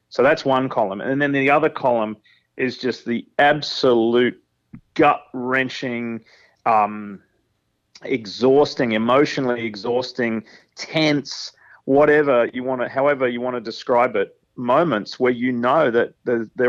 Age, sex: 30-49, male